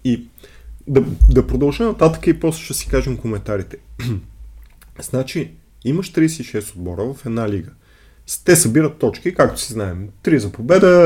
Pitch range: 95-130 Hz